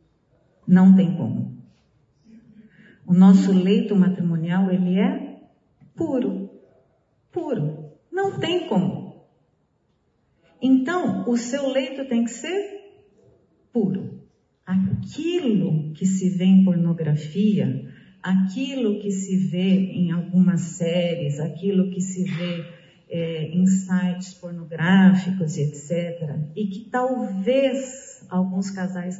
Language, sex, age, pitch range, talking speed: Portuguese, female, 40-59, 175-250 Hz, 105 wpm